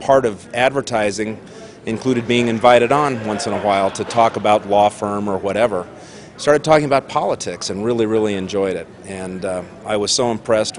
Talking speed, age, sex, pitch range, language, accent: 185 wpm, 40-59, male, 100-115 Hz, English, American